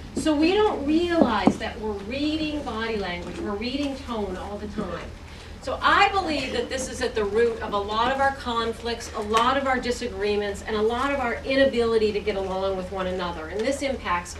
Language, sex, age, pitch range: English, female, 40-59, 215-280 Hz